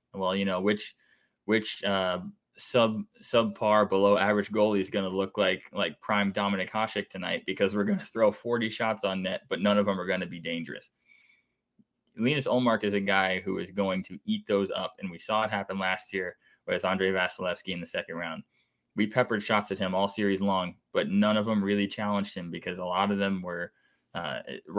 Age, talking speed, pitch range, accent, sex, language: 20-39, 210 wpm, 95-110 Hz, American, male, English